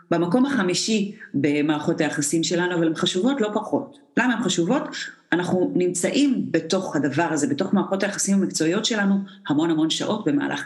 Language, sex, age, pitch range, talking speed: Hebrew, female, 40-59, 160-225 Hz, 150 wpm